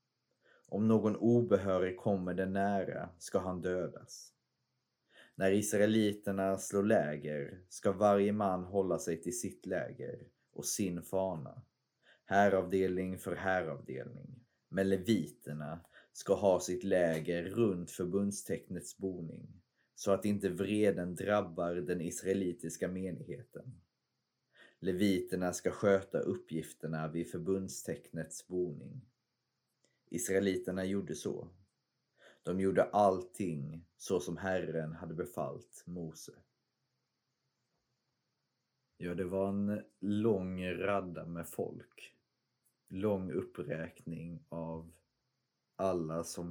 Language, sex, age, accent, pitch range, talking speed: Swedish, male, 30-49, native, 85-100 Hz, 100 wpm